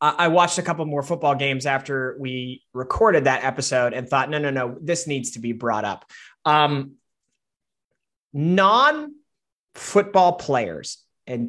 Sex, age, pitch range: male, 30-49, 135-195 Hz